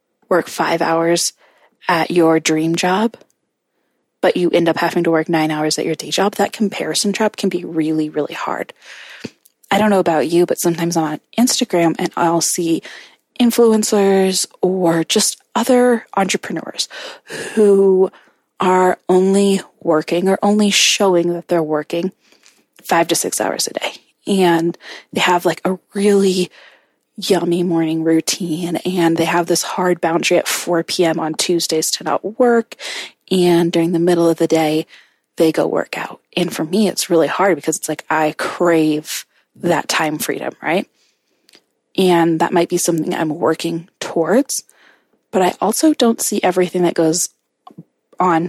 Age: 20-39